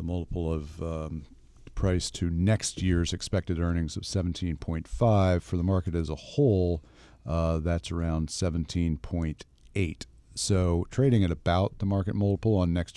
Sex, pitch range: male, 85-100 Hz